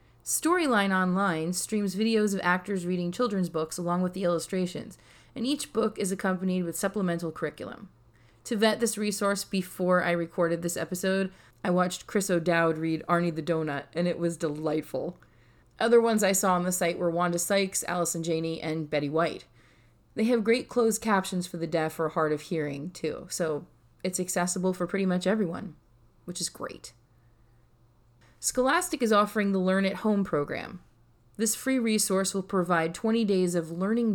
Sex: female